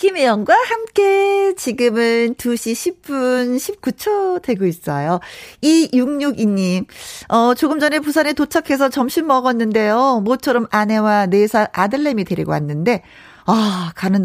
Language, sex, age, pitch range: Korean, female, 40-59, 195-280 Hz